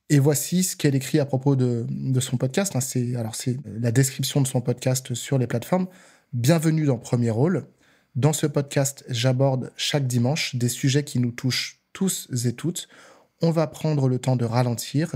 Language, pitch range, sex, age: French, 125-150 Hz, male, 20-39